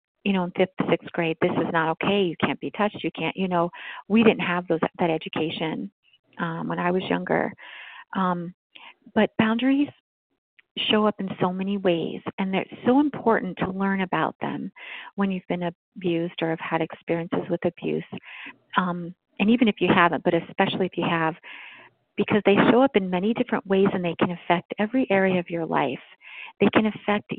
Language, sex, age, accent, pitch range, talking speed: English, female, 40-59, American, 175-215 Hz, 195 wpm